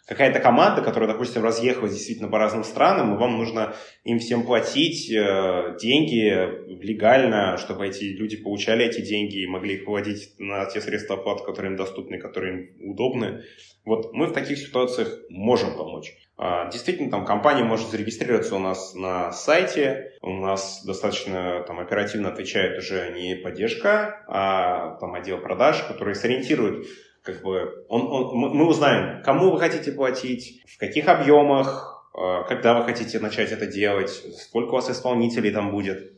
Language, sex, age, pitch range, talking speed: Russian, male, 20-39, 100-125 Hz, 150 wpm